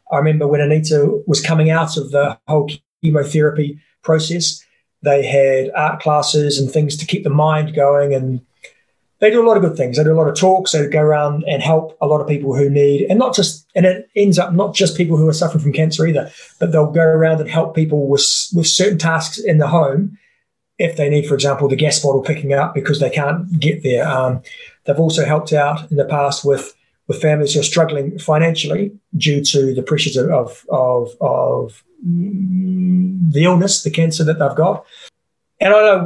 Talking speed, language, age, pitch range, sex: 215 wpm, English, 30-49, 145-170 Hz, male